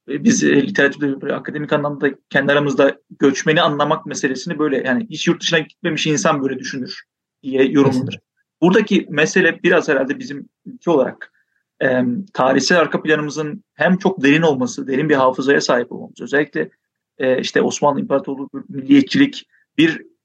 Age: 40-59